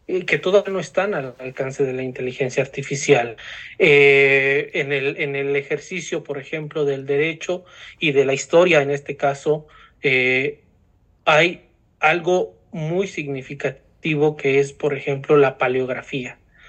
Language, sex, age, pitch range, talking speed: Spanish, male, 40-59, 140-170 Hz, 135 wpm